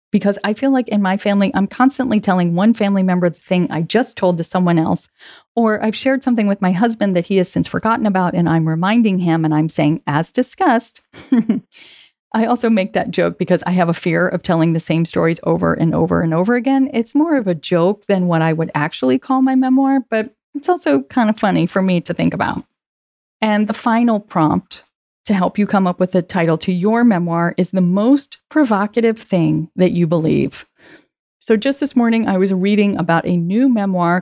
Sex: female